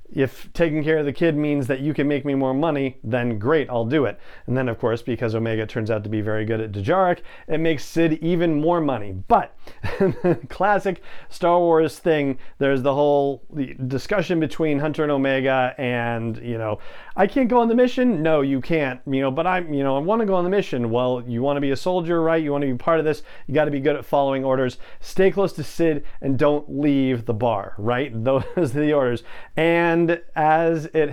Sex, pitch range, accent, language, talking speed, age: male, 130-160 Hz, American, English, 225 wpm, 40-59